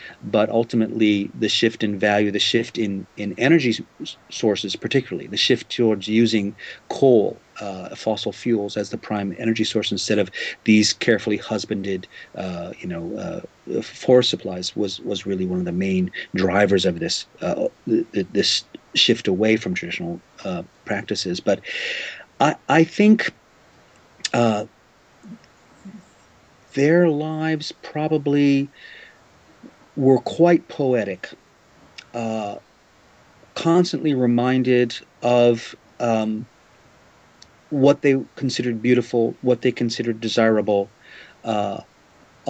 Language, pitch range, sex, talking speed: English, 110-130 Hz, male, 115 wpm